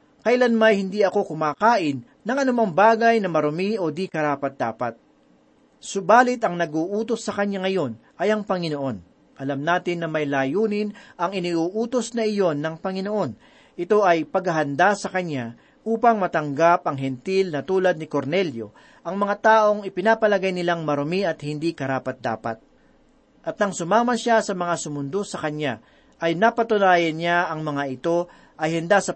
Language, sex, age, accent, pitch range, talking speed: Filipino, male, 40-59, native, 155-210 Hz, 150 wpm